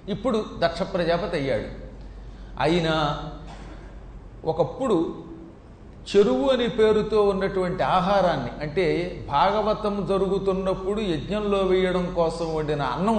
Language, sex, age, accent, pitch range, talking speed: Telugu, male, 40-59, native, 155-195 Hz, 85 wpm